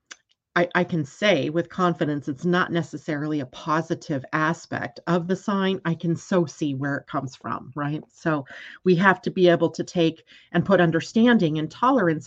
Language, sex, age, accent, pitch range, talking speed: English, female, 40-59, American, 155-190 Hz, 180 wpm